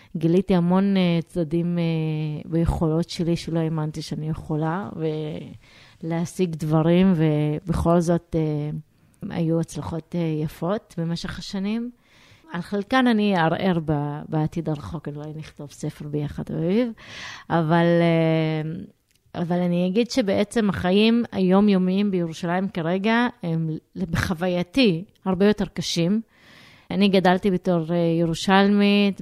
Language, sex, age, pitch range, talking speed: Hebrew, female, 30-49, 165-195 Hz, 95 wpm